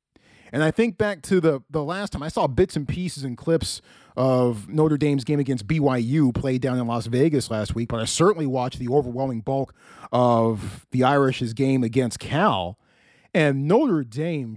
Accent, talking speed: American, 185 wpm